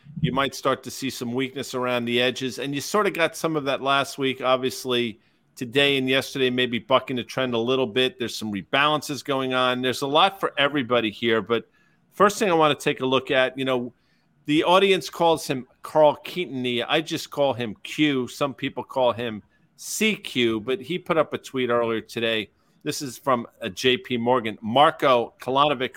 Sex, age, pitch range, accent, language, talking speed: male, 50-69, 120-145 Hz, American, English, 200 wpm